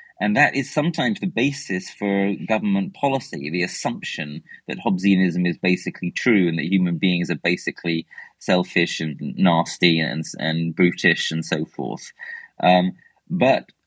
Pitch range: 90-135 Hz